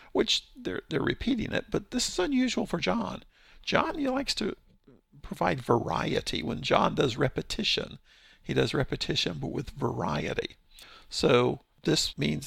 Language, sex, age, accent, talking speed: English, male, 50-69, American, 145 wpm